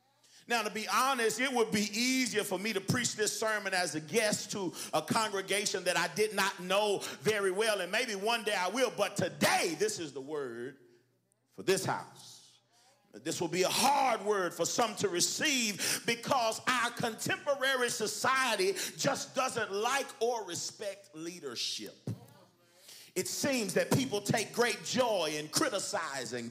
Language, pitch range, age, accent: English, 170-230 Hz, 40-59, American